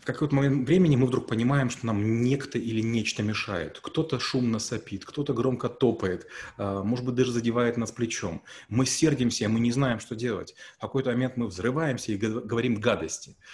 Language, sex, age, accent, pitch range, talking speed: Russian, male, 30-49, native, 115-150 Hz, 175 wpm